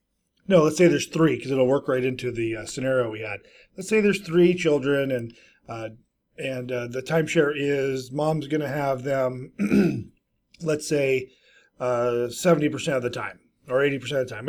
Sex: male